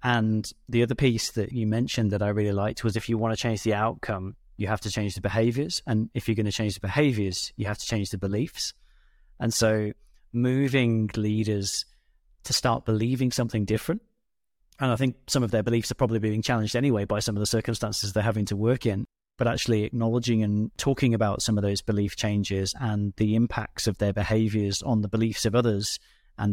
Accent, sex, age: British, male, 30-49